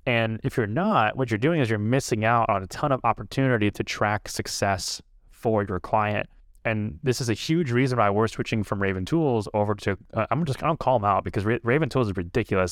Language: English